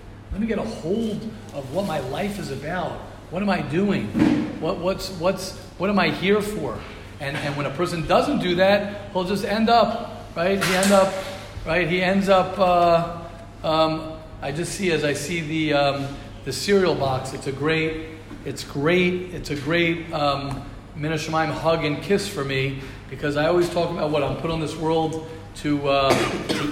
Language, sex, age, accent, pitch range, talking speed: English, male, 40-59, American, 145-185 Hz, 190 wpm